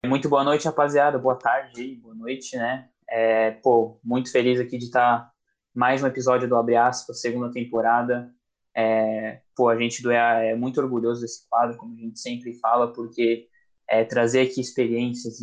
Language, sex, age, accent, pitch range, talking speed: Portuguese, male, 20-39, Brazilian, 115-130 Hz, 175 wpm